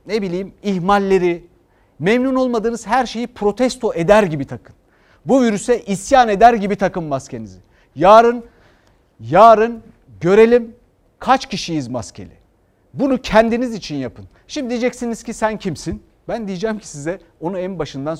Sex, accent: male, native